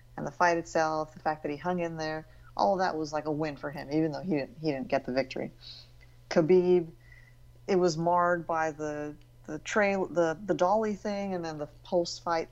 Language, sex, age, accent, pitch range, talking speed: English, female, 30-49, American, 125-170 Hz, 220 wpm